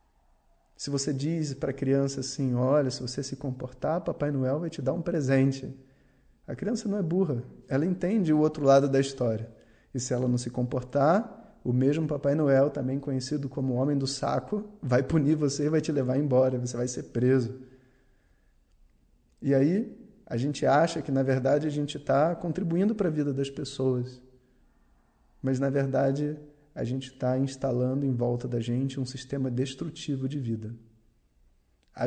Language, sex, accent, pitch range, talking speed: Portuguese, male, Brazilian, 125-150 Hz, 175 wpm